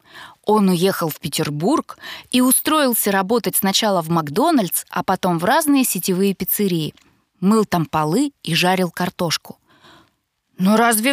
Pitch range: 180-245 Hz